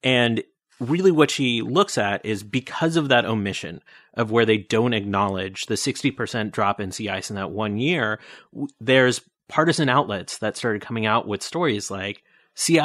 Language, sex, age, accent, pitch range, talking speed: English, male, 30-49, American, 105-140 Hz, 175 wpm